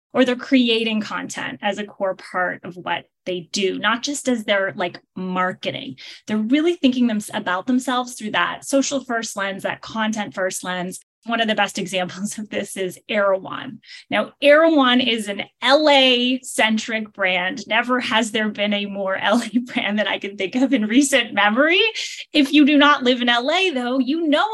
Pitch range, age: 200-265 Hz, 10-29